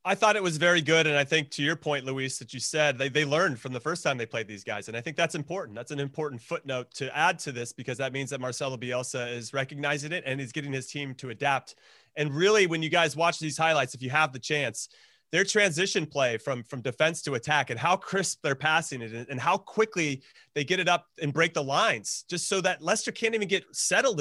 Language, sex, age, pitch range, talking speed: English, male, 30-49, 145-195 Hz, 255 wpm